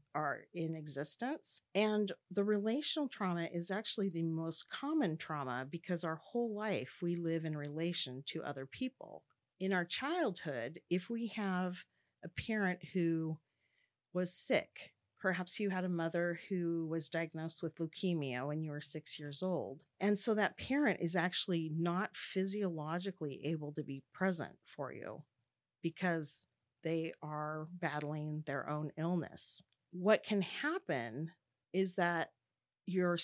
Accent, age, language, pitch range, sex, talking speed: American, 40-59, English, 155-190 Hz, female, 140 wpm